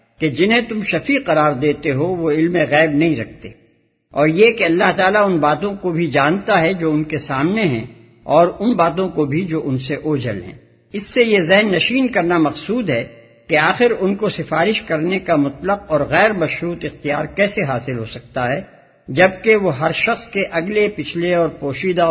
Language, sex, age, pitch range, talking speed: English, male, 60-79, 150-200 Hz, 195 wpm